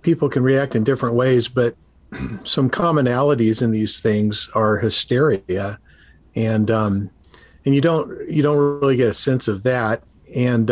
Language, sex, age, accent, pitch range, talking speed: English, male, 50-69, American, 110-135 Hz, 155 wpm